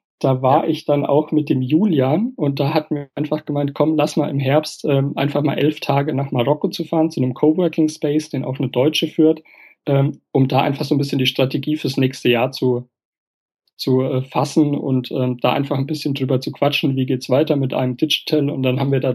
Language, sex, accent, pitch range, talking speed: German, male, German, 130-150 Hz, 225 wpm